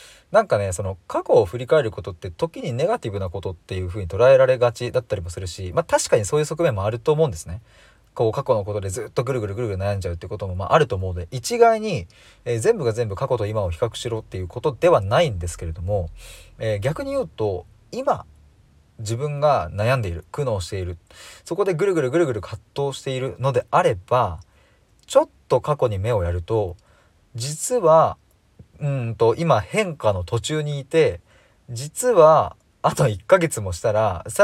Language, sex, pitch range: Japanese, male, 95-135 Hz